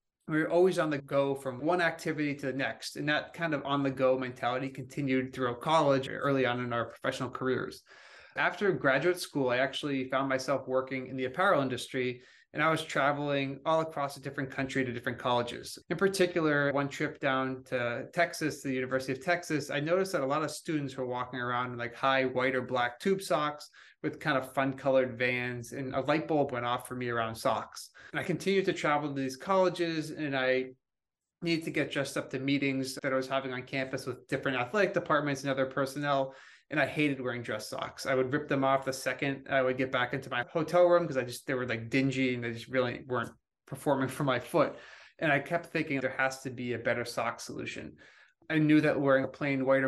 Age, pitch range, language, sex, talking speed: 20-39, 130-150 Hz, English, male, 220 wpm